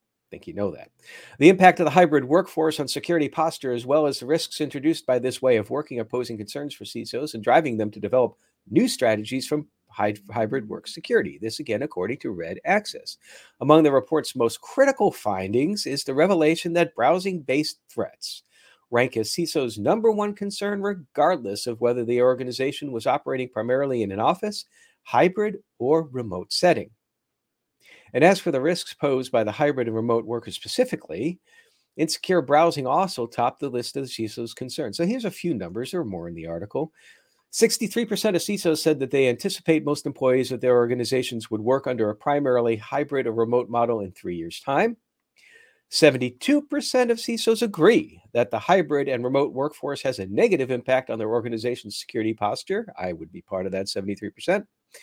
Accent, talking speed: American, 175 wpm